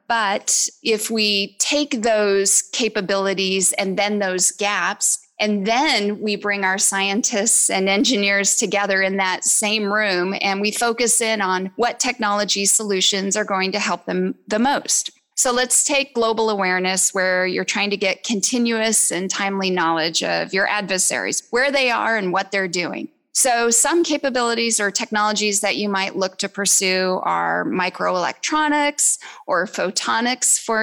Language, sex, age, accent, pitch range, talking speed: English, female, 30-49, American, 195-230 Hz, 150 wpm